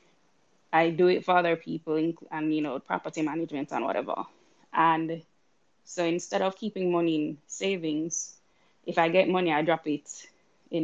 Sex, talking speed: female, 160 wpm